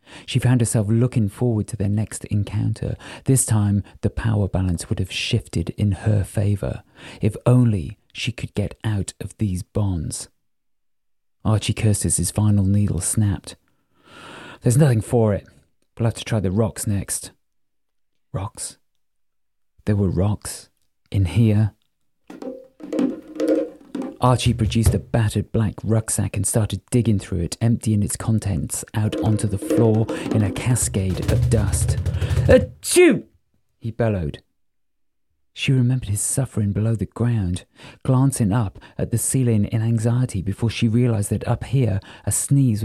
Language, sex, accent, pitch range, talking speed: English, male, British, 100-120 Hz, 140 wpm